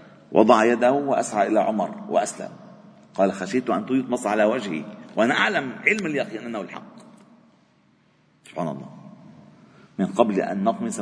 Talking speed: 130 wpm